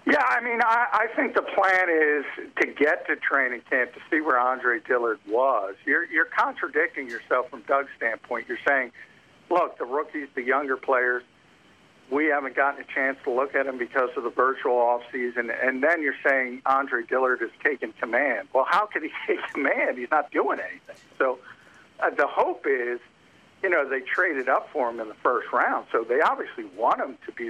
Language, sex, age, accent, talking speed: English, male, 50-69, American, 200 wpm